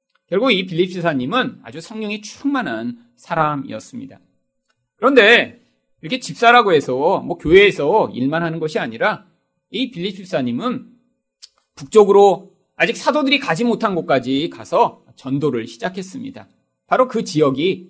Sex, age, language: male, 40-59, Korean